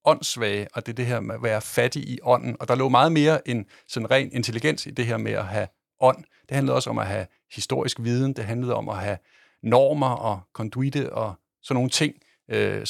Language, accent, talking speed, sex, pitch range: Danish, native, 220 wpm, male, 110-140 Hz